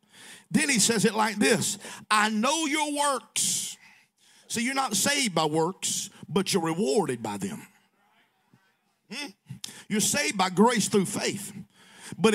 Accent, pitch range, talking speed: American, 185-220 Hz, 140 wpm